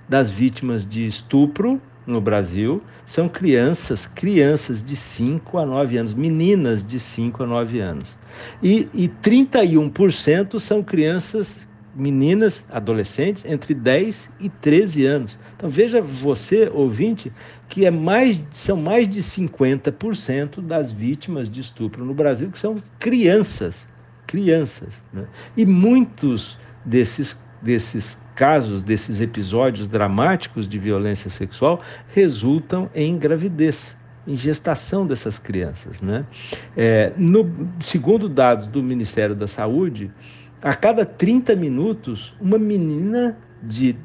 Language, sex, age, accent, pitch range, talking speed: Portuguese, male, 60-79, Brazilian, 120-185 Hz, 120 wpm